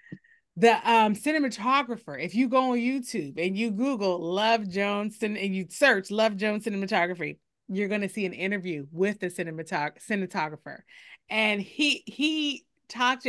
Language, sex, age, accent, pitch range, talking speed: English, female, 30-49, American, 185-235 Hz, 145 wpm